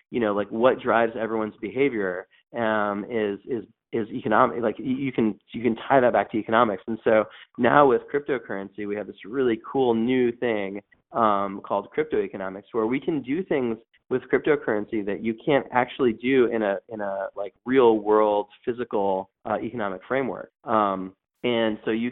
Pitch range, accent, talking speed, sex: 100-115 Hz, American, 175 wpm, male